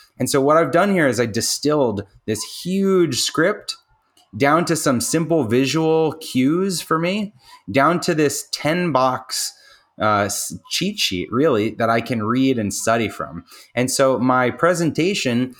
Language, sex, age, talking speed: English, male, 20-39, 155 wpm